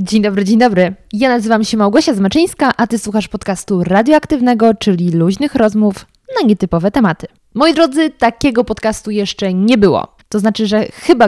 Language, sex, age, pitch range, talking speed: Polish, female, 20-39, 195-240 Hz, 165 wpm